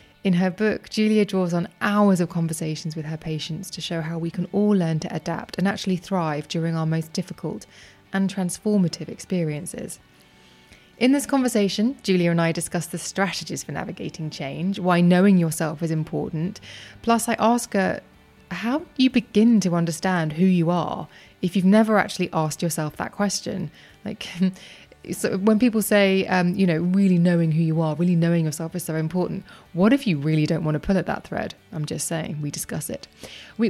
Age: 20-39